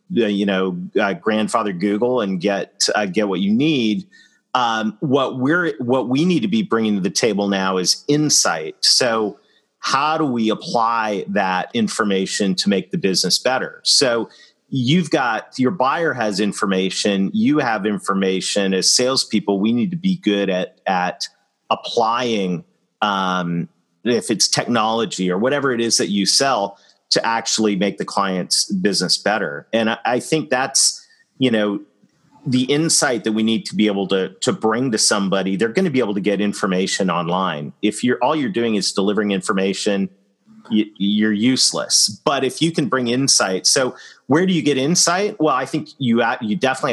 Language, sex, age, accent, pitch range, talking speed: English, male, 40-59, American, 100-135 Hz, 170 wpm